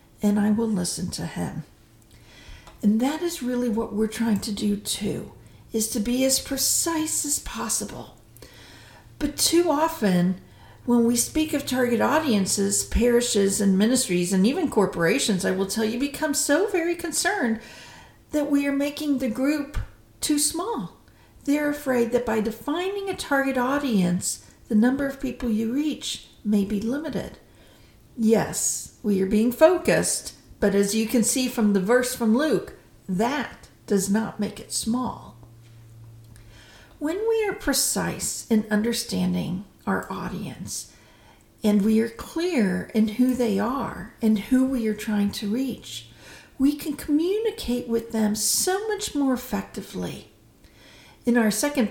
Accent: American